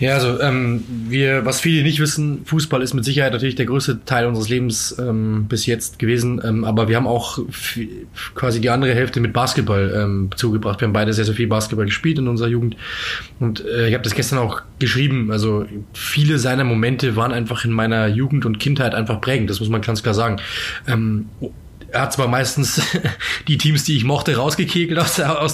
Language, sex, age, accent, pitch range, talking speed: German, male, 20-39, German, 115-140 Hz, 200 wpm